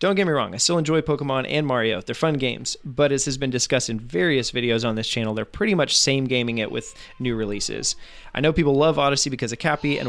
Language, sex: English, male